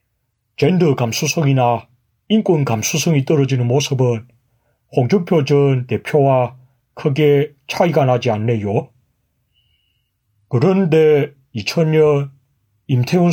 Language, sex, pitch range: Korean, male, 120-155 Hz